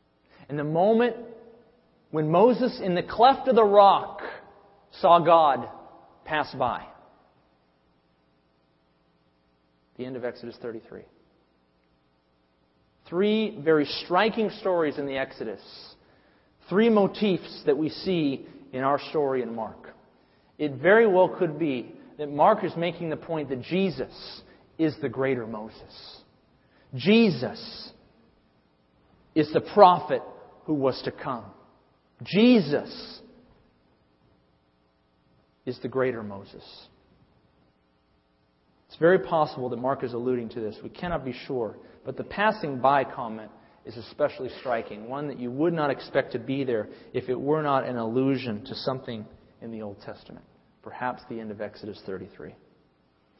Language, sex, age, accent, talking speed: English, male, 40-59, American, 130 wpm